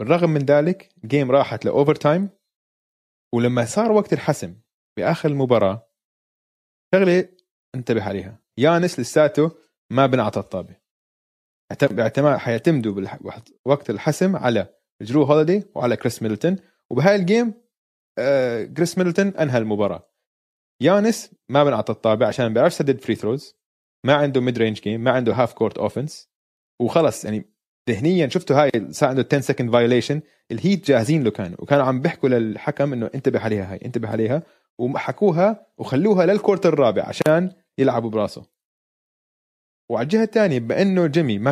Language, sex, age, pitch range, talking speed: Arabic, male, 20-39, 115-170 Hz, 135 wpm